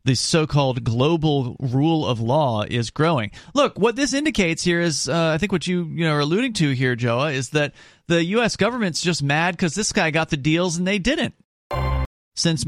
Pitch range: 125-165 Hz